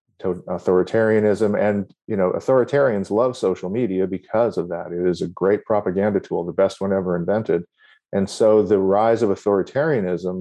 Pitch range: 90-110 Hz